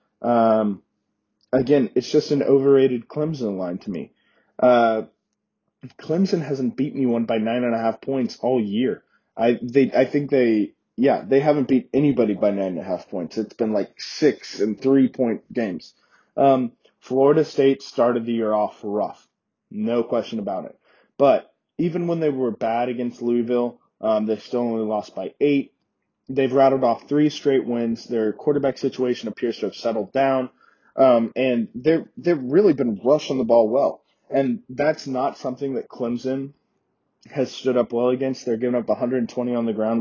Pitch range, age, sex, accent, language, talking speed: 115-135 Hz, 20-39, male, American, English, 175 wpm